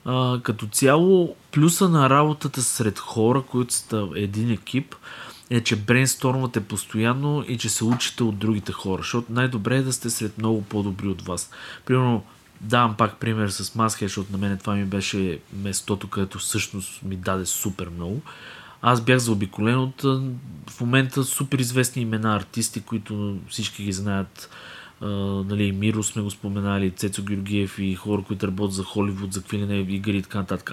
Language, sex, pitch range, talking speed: Bulgarian, male, 100-130 Hz, 170 wpm